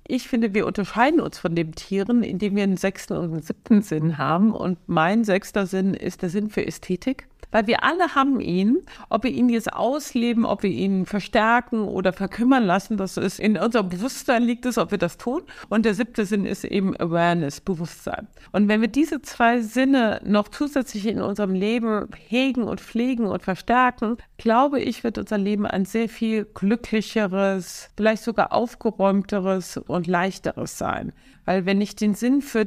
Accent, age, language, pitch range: German, 50-69, German, 190-235 Hz